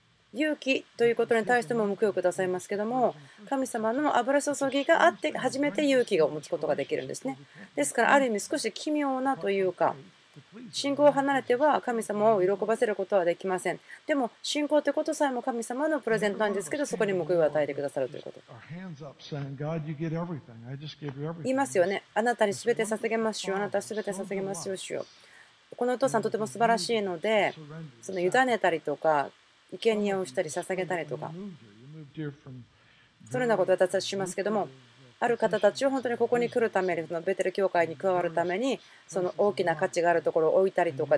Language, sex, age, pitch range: Japanese, female, 40-59, 165-235 Hz